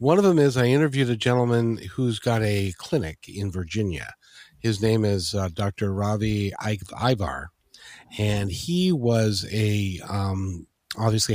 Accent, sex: American, male